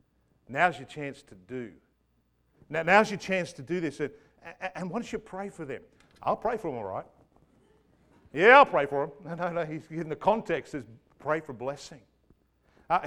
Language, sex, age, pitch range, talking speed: English, male, 50-69, 155-210 Hz, 200 wpm